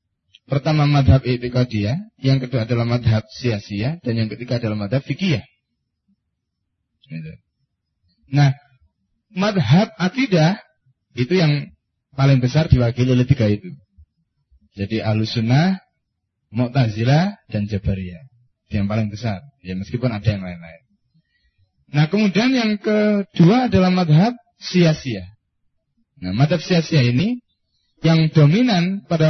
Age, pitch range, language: 30-49, 105-170 Hz, Indonesian